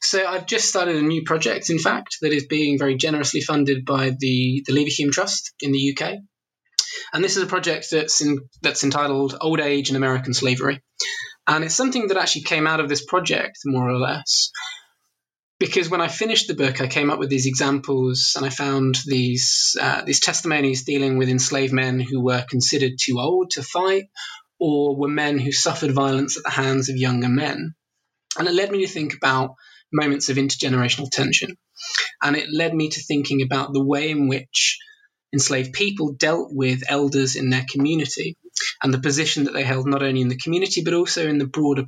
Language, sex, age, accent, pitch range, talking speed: English, male, 20-39, British, 135-160 Hz, 200 wpm